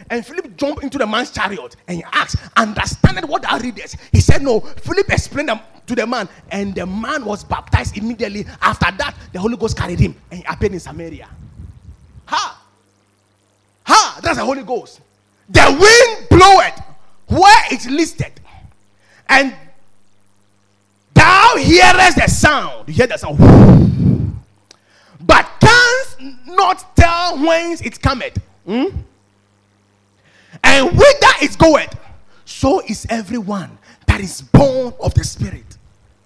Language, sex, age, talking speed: English, male, 30-49, 140 wpm